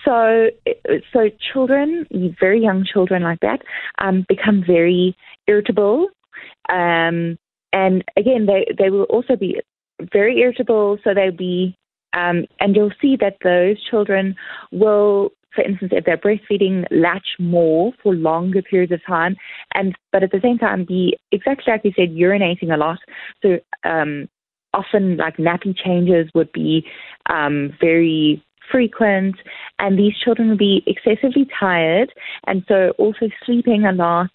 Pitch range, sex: 170-210 Hz, female